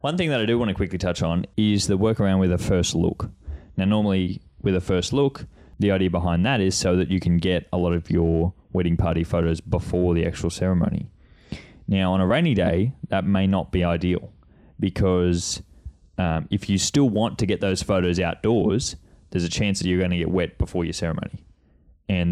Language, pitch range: English, 85-100 Hz